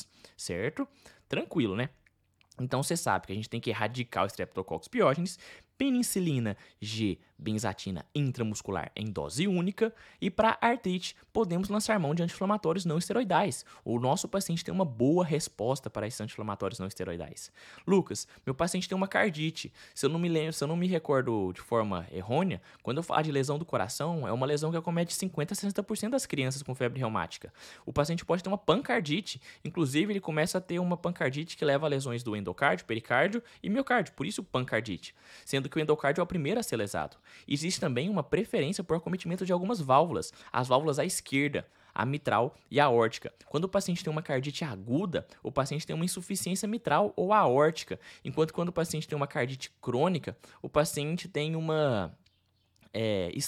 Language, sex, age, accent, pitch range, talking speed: Portuguese, male, 20-39, Brazilian, 115-175 Hz, 185 wpm